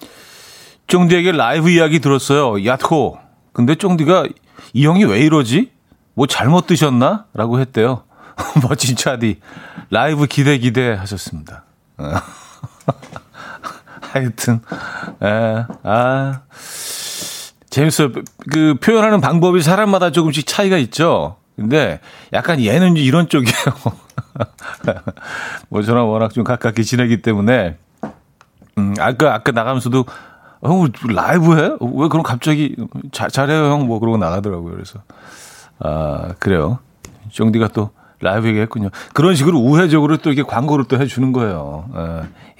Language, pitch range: Korean, 110-150 Hz